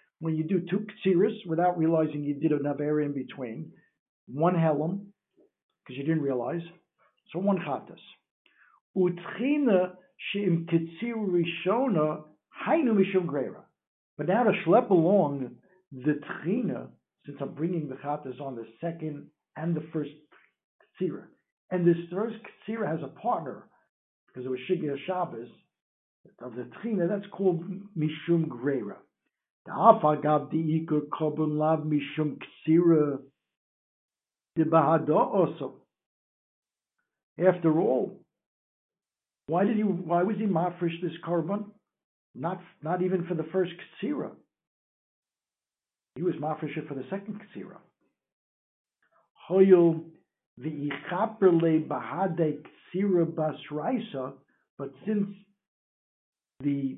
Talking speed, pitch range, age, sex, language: 120 wpm, 145-185 Hz, 60-79, male, English